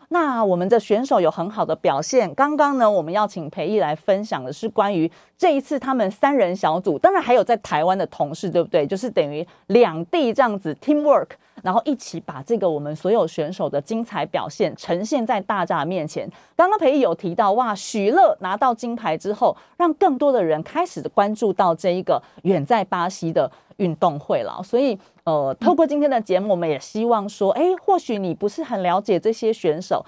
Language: Chinese